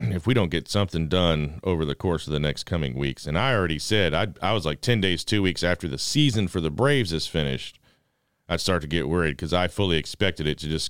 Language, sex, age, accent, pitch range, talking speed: English, male, 40-59, American, 80-110 Hz, 255 wpm